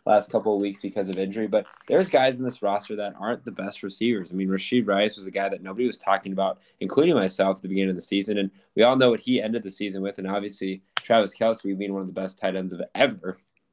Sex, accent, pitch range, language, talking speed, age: male, American, 100-125 Hz, English, 265 wpm, 10-29